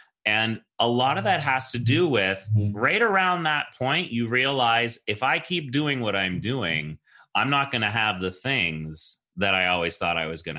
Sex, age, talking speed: male, 30-49, 205 wpm